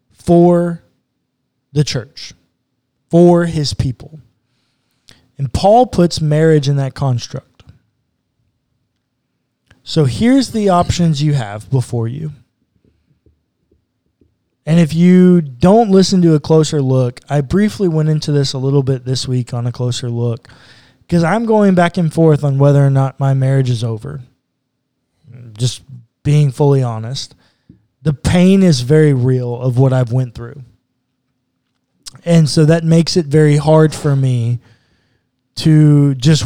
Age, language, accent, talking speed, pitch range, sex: 20-39, English, American, 135 wpm, 125-160 Hz, male